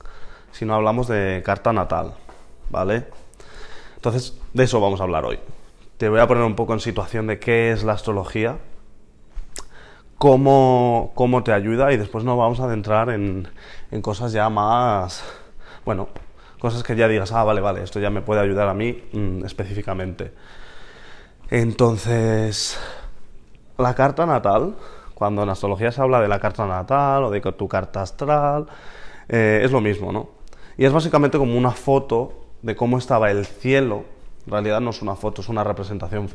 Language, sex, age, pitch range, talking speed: Spanish, male, 20-39, 100-120 Hz, 165 wpm